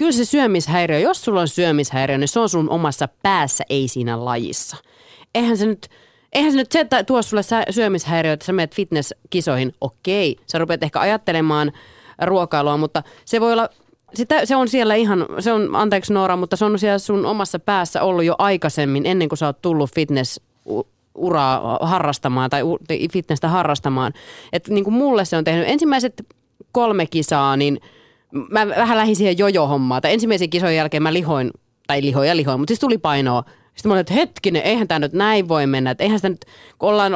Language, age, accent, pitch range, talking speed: Finnish, 30-49, native, 150-220 Hz, 185 wpm